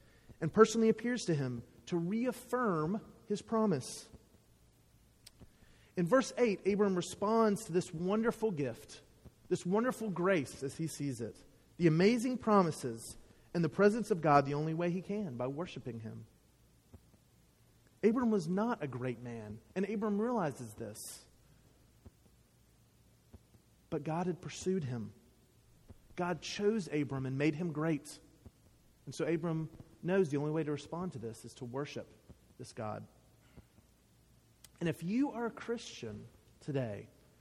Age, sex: 40-59, male